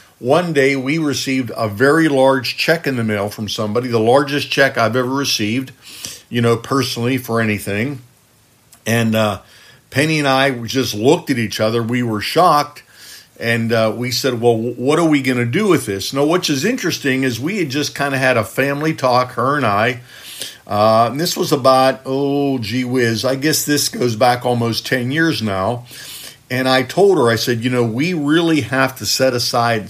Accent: American